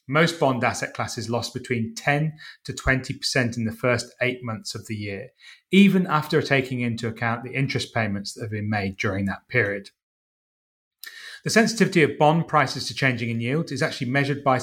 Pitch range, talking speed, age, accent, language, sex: 115-150 Hz, 185 wpm, 30-49, British, English, male